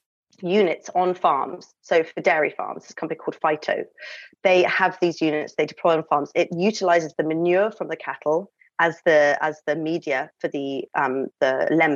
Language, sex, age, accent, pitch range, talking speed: English, female, 30-49, British, 155-190 Hz, 170 wpm